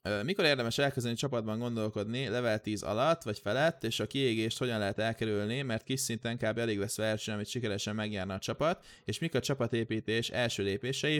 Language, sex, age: Hungarian, male, 20-39